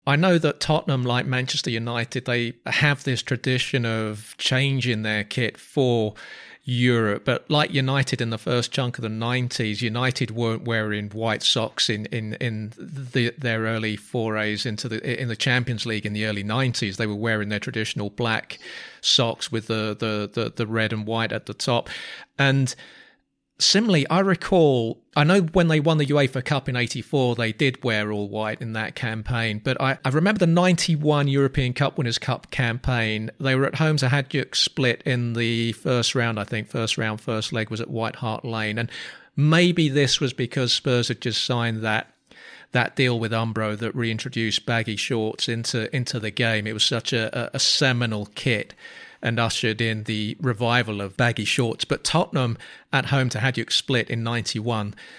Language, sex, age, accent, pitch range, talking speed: English, male, 40-59, British, 110-135 Hz, 185 wpm